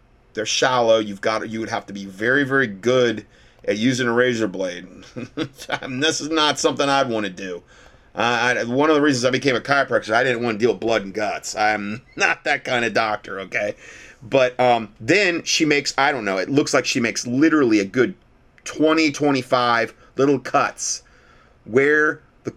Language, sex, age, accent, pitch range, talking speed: English, male, 30-49, American, 115-145 Hz, 200 wpm